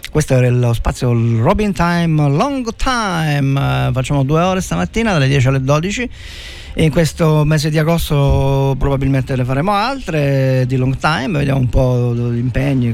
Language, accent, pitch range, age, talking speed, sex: Italian, native, 130-195 Hz, 40-59, 160 wpm, male